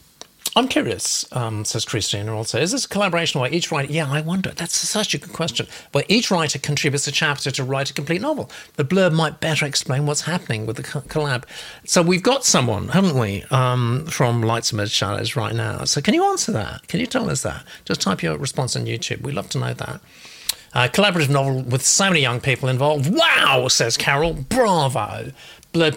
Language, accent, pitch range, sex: English, British, 120-160 Hz, male